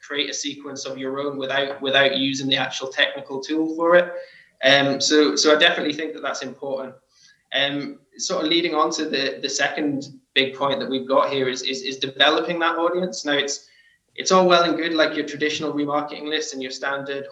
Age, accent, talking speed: 20-39, British, 210 wpm